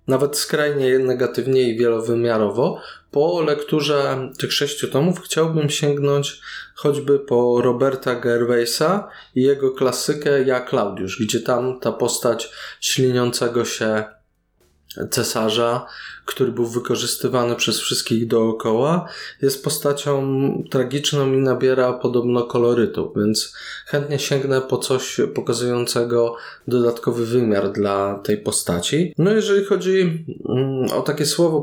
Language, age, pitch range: Polish, 20-39, 120-145 Hz